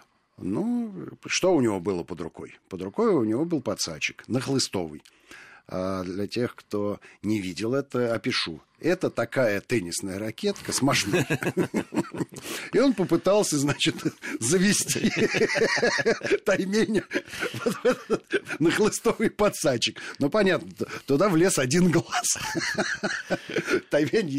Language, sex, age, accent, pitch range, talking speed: Russian, male, 50-69, native, 110-165 Hz, 110 wpm